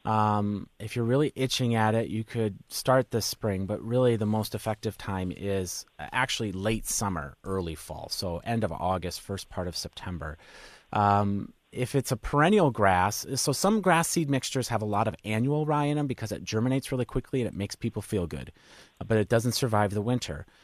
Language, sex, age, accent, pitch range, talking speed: English, male, 30-49, American, 100-125 Hz, 200 wpm